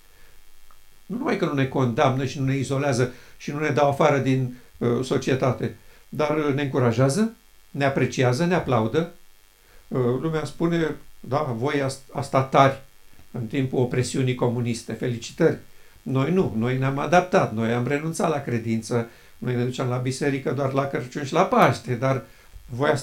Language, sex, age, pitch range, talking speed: Romanian, male, 60-79, 120-160 Hz, 155 wpm